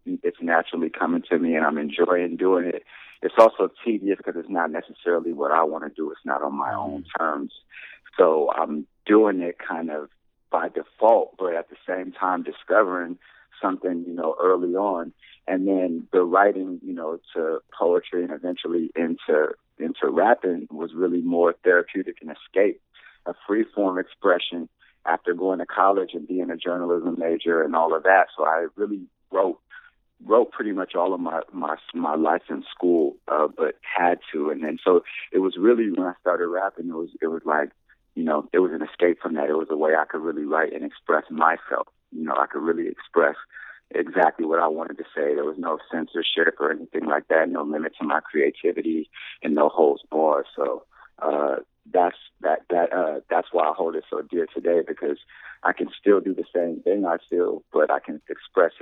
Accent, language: American, English